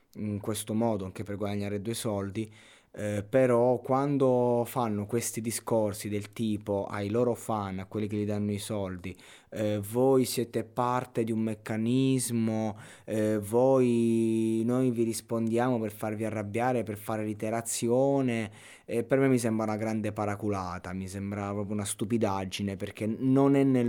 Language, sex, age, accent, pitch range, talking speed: Italian, male, 20-39, native, 100-115 Hz, 150 wpm